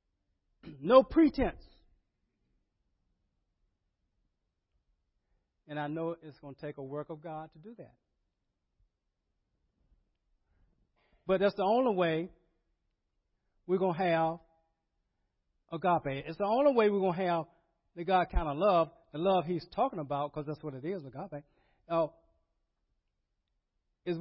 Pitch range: 120-175 Hz